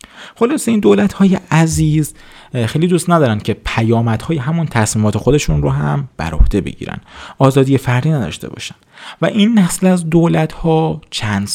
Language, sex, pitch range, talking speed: Persian, male, 105-160 Hz, 150 wpm